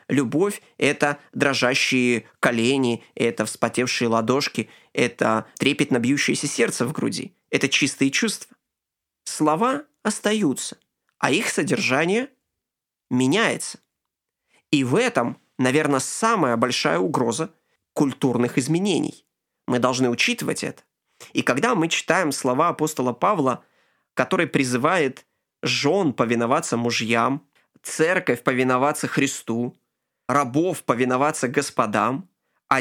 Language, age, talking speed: Ukrainian, 20-39, 100 wpm